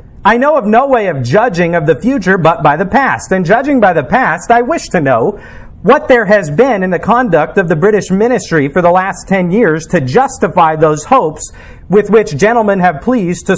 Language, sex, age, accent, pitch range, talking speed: English, male, 40-59, American, 165-230 Hz, 215 wpm